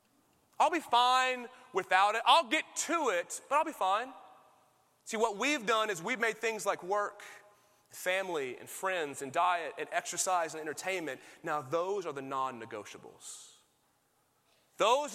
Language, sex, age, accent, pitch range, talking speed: English, male, 30-49, American, 210-295 Hz, 150 wpm